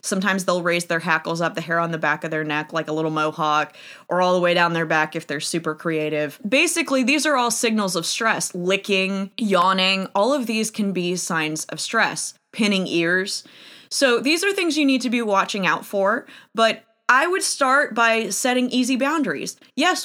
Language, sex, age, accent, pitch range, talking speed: English, female, 20-39, American, 170-230 Hz, 205 wpm